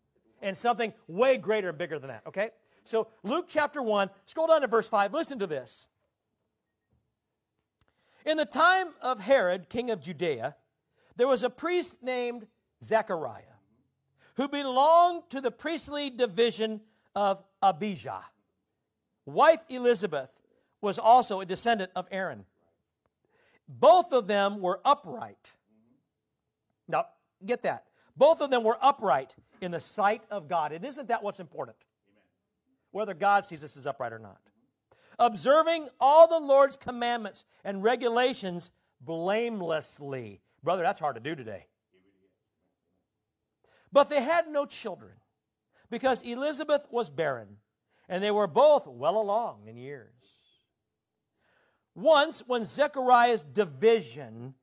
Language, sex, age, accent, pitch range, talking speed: English, male, 60-79, American, 175-265 Hz, 130 wpm